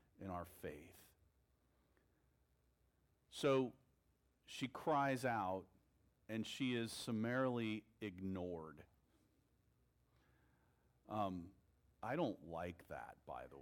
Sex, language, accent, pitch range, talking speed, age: male, English, American, 85-125 Hz, 85 wpm, 40-59